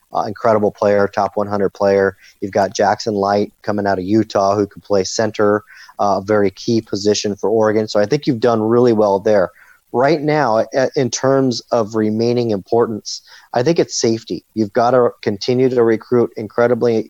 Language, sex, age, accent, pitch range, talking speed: English, male, 40-59, American, 100-115 Hz, 175 wpm